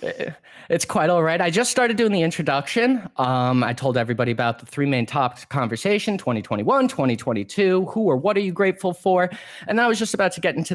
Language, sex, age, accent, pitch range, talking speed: English, male, 20-39, American, 120-185 Hz, 210 wpm